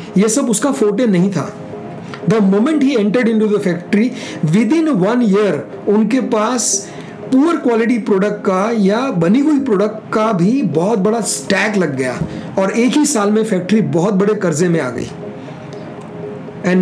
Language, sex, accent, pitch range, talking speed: Hindi, male, native, 185-235 Hz, 170 wpm